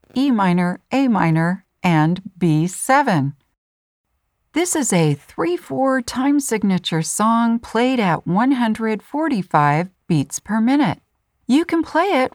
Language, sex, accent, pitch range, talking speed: English, female, American, 170-260 Hz, 110 wpm